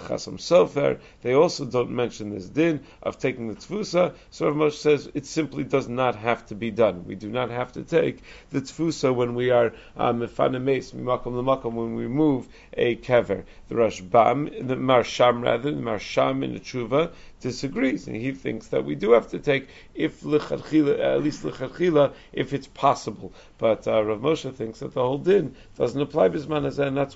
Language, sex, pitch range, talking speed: English, male, 120-145 Hz, 170 wpm